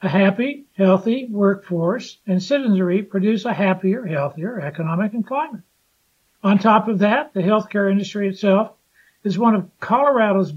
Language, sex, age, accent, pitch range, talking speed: English, male, 60-79, American, 185-220 Hz, 140 wpm